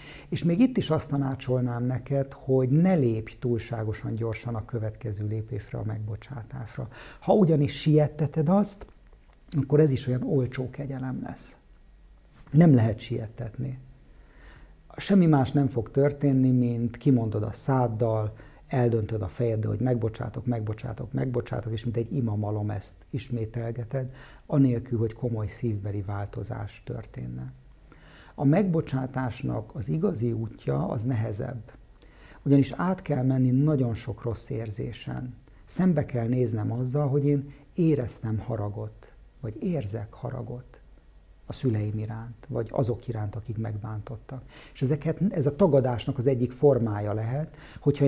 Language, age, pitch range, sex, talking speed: Hungarian, 50-69, 110-140 Hz, male, 125 wpm